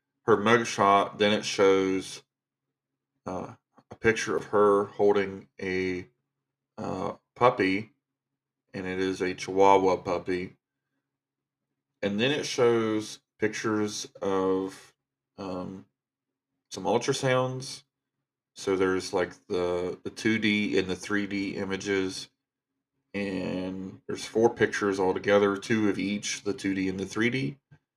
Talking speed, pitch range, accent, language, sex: 120 wpm, 95-130 Hz, American, English, male